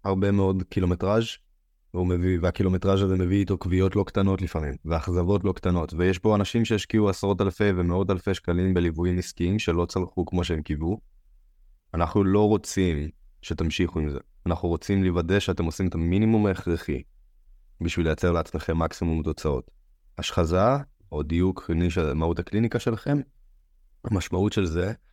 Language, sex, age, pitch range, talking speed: Hebrew, male, 20-39, 85-100 Hz, 140 wpm